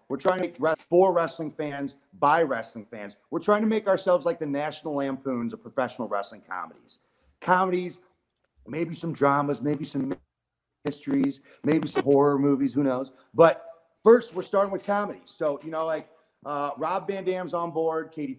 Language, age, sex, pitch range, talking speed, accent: English, 40-59, male, 135-160 Hz, 175 wpm, American